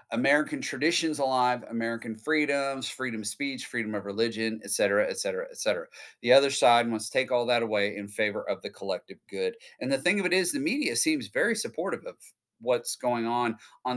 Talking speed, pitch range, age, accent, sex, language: 205 wpm, 110-140 Hz, 30-49, American, male, English